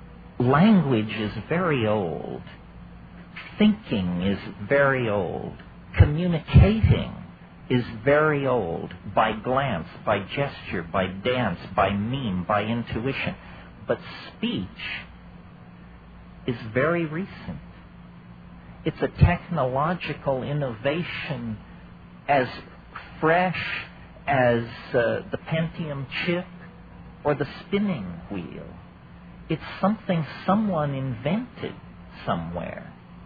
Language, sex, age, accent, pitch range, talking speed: English, male, 50-69, American, 125-170 Hz, 85 wpm